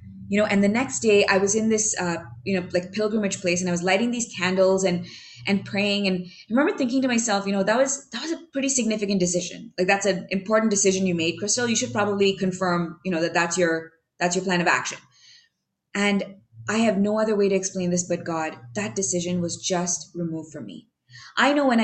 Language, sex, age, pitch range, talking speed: English, female, 20-39, 175-205 Hz, 230 wpm